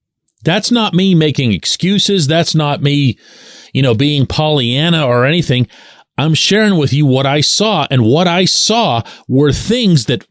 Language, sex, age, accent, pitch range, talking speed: English, male, 40-59, American, 110-180 Hz, 165 wpm